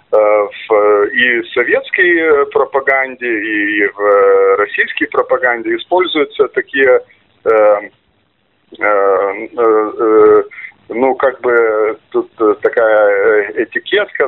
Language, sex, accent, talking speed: Russian, male, native, 80 wpm